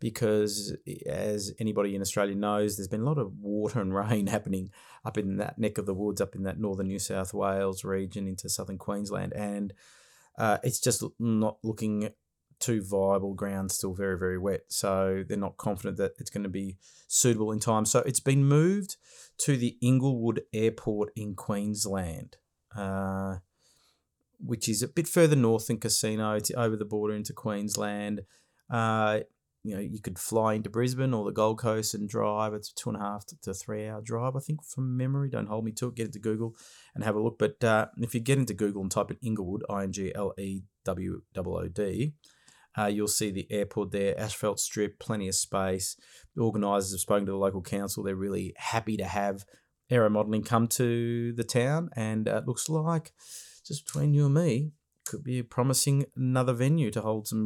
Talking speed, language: 190 wpm, English